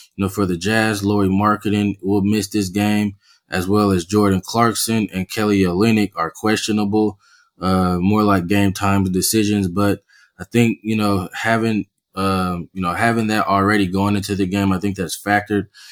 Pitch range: 95-105 Hz